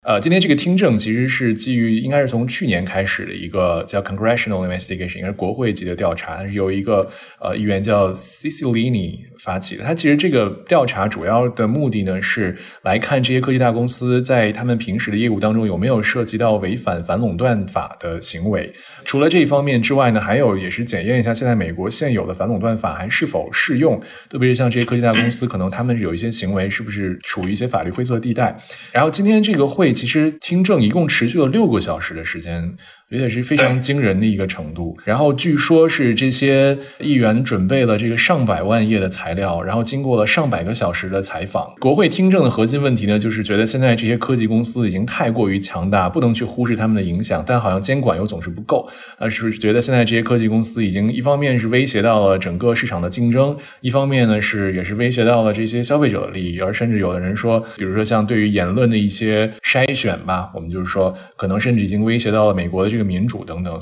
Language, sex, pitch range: Chinese, male, 100-125 Hz